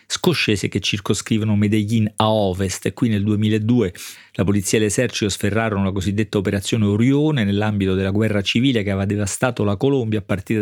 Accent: native